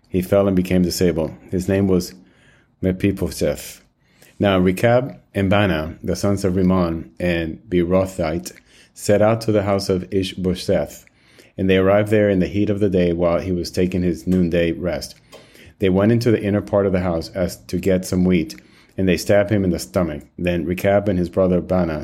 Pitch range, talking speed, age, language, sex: 85-100 Hz, 190 wpm, 30-49, English, male